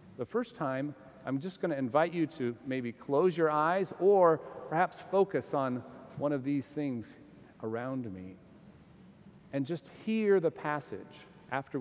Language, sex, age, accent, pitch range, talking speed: English, male, 40-59, American, 130-185 Hz, 150 wpm